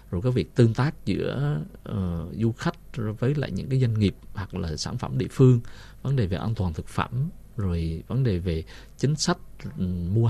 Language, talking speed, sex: Vietnamese, 205 wpm, male